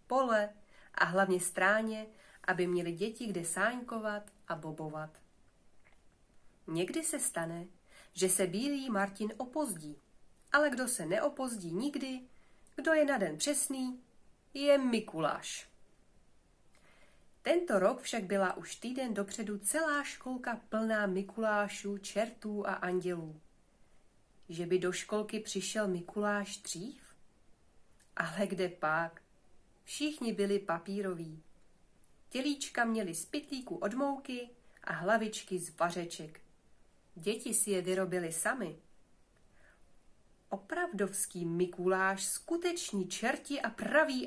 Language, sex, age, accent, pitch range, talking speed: Czech, female, 40-59, native, 185-255 Hz, 105 wpm